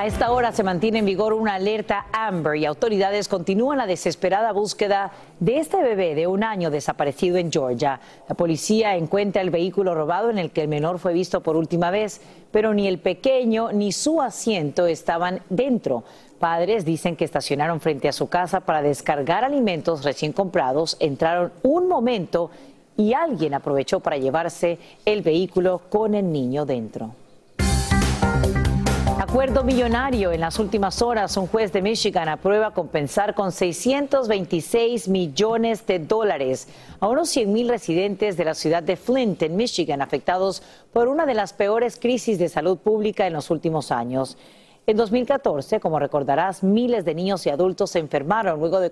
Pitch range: 160-215 Hz